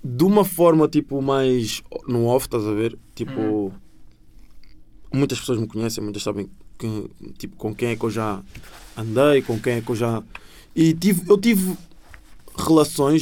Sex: male